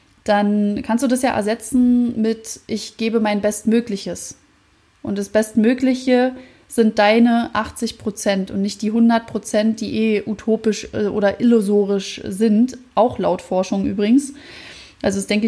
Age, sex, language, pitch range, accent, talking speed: 20-39, female, German, 205-240 Hz, German, 130 wpm